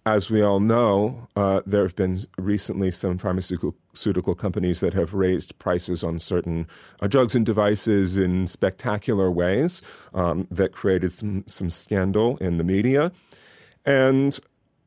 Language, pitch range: English, 90-115 Hz